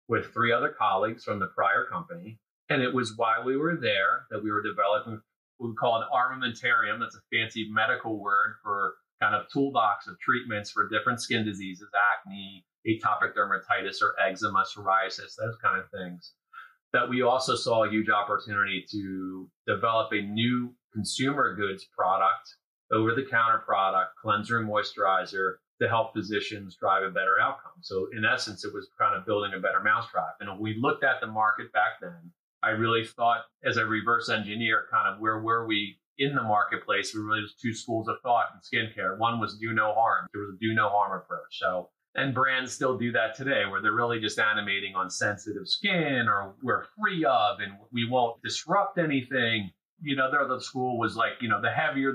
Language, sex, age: English, male, 30-49